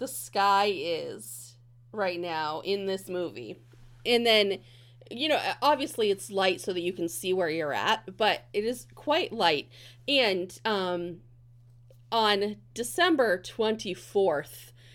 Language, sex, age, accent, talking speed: English, female, 30-49, American, 135 wpm